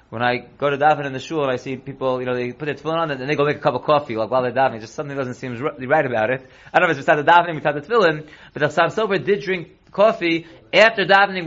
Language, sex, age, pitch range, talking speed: English, male, 30-49, 155-200 Hz, 310 wpm